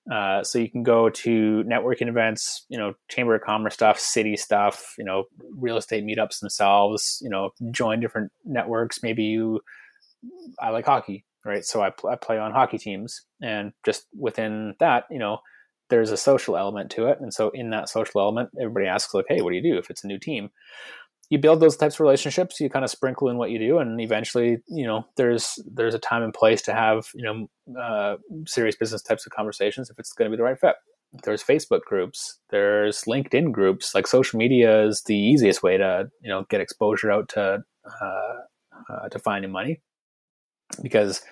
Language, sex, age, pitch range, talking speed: English, male, 20-39, 105-130 Hz, 205 wpm